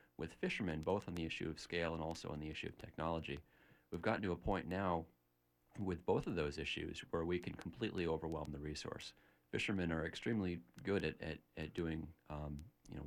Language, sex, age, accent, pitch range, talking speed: English, male, 40-59, American, 80-90 Hz, 200 wpm